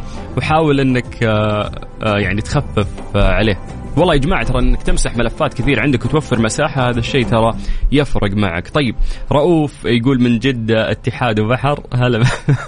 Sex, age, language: male, 20-39, Arabic